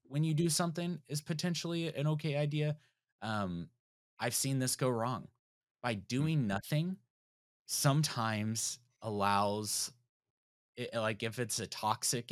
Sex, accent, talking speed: male, American, 125 wpm